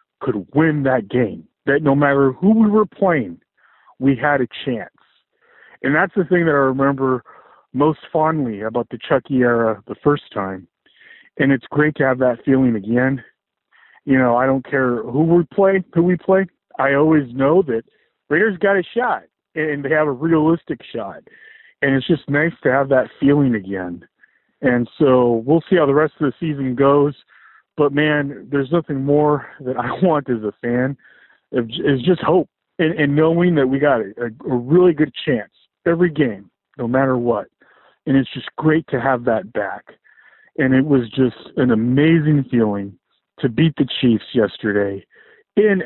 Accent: American